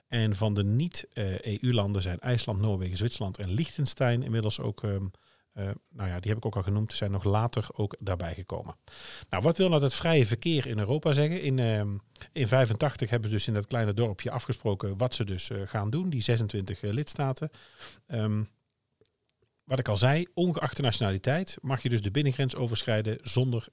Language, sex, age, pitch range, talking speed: Dutch, male, 50-69, 105-130 Hz, 170 wpm